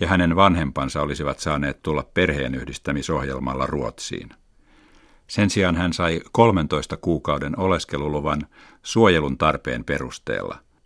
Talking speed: 105 wpm